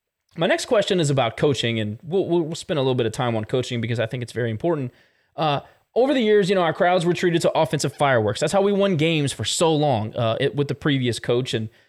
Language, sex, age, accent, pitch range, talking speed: English, male, 20-39, American, 125-205 Hz, 255 wpm